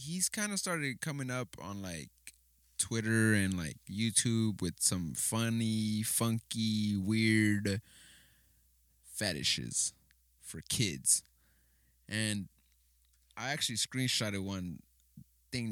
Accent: American